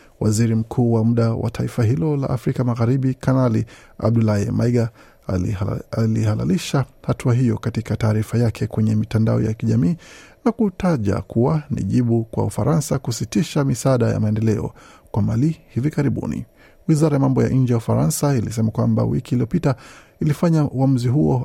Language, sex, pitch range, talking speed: Swahili, male, 110-135 Hz, 145 wpm